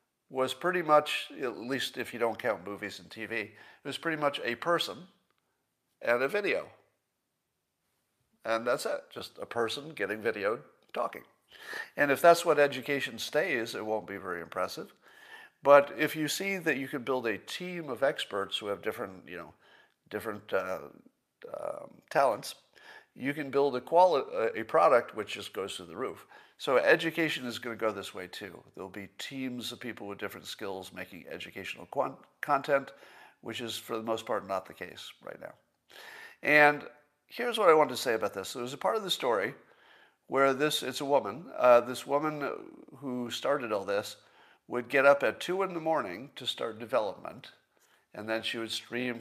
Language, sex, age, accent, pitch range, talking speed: English, male, 50-69, American, 115-155 Hz, 185 wpm